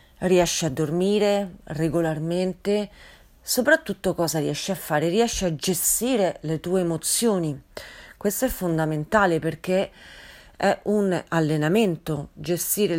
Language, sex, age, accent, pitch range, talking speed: Italian, female, 40-59, native, 165-205 Hz, 105 wpm